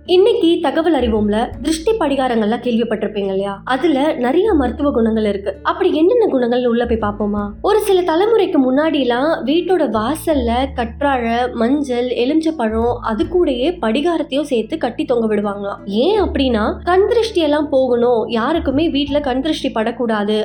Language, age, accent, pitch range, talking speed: Tamil, 20-39, native, 230-335 Hz, 130 wpm